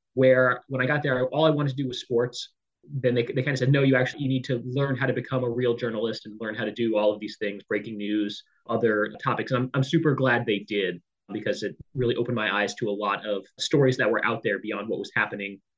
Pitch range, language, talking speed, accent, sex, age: 110-135 Hz, English, 265 wpm, American, male, 30-49